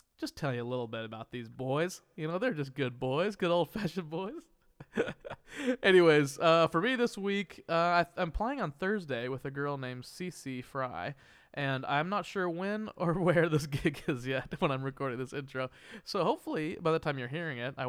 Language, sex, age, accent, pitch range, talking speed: English, male, 20-39, American, 125-160 Hz, 200 wpm